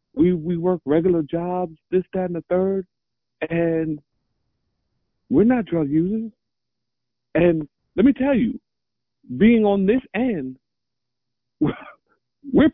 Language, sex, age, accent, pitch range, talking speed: English, male, 50-69, American, 135-195 Hz, 120 wpm